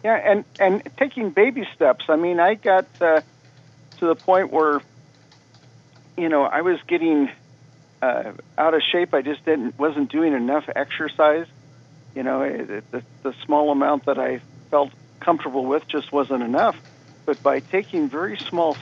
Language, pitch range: English, 140-195 Hz